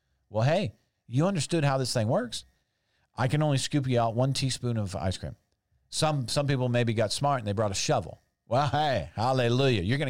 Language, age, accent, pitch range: English, 50-69, American, 110-150 Hz